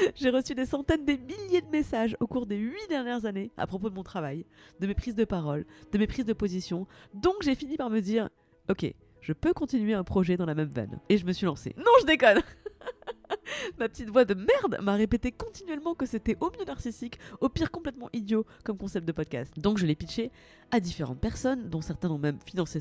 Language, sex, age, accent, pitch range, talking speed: French, female, 30-49, French, 165-255 Hz, 225 wpm